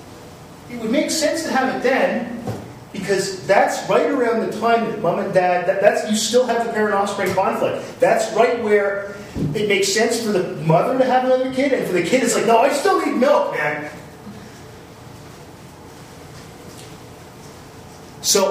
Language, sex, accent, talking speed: English, male, American, 170 wpm